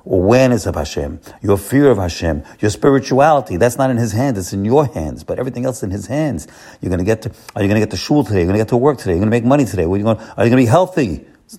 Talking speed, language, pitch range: 340 wpm, English, 95-140 Hz